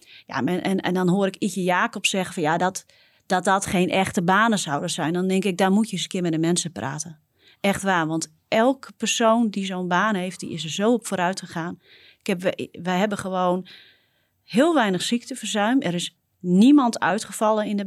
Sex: female